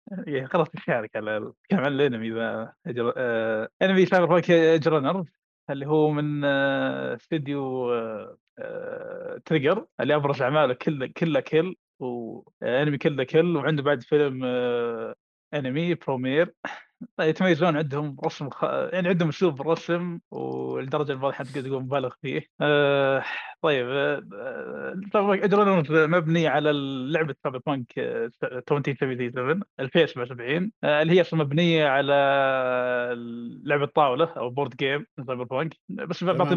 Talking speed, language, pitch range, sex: 125 wpm, Arabic, 135-175 Hz, male